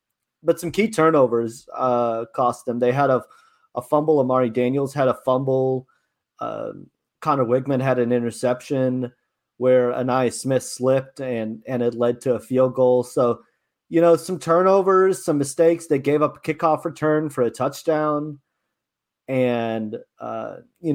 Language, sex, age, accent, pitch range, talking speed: English, male, 30-49, American, 125-155 Hz, 155 wpm